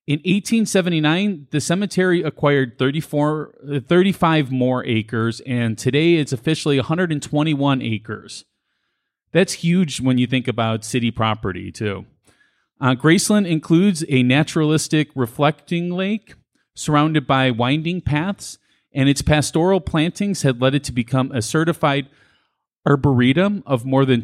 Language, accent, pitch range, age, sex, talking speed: English, American, 120-165 Hz, 30-49, male, 120 wpm